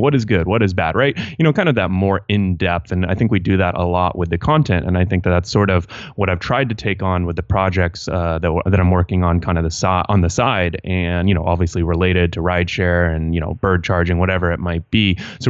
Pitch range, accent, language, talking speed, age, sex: 90-105 Hz, American, English, 285 wpm, 30-49, male